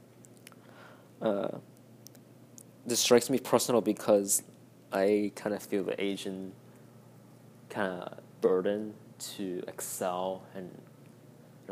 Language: English